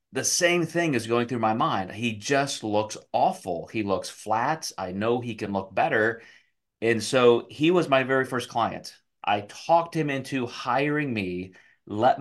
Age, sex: 30-49, male